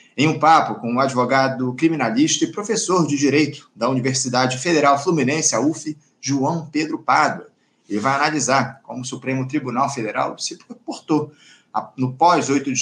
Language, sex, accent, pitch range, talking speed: Portuguese, male, Brazilian, 125-150 Hz, 160 wpm